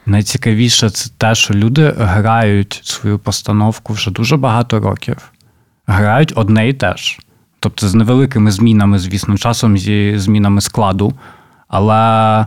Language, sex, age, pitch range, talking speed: Ukrainian, male, 20-39, 100-120 Hz, 125 wpm